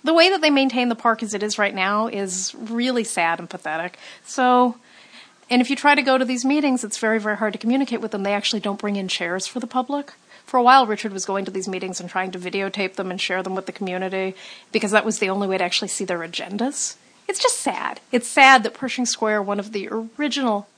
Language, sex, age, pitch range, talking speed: English, female, 40-59, 195-250 Hz, 250 wpm